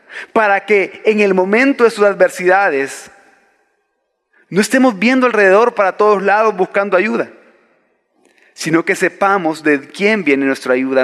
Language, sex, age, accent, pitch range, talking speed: Spanish, male, 40-59, Mexican, 155-205 Hz, 135 wpm